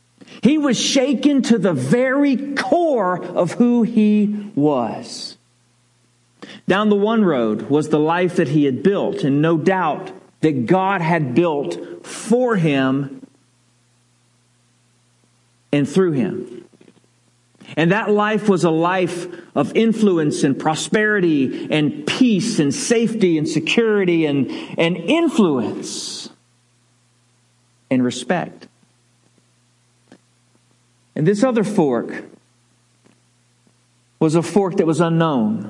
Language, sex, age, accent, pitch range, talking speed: English, male, 50-69, American, 120-200 Hz, 110 wpm